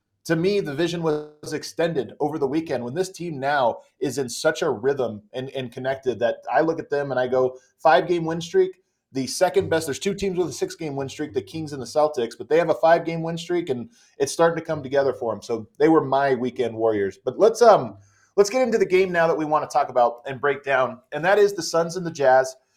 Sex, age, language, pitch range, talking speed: male, 30-49, English, 135-185 Hz, 250 wpm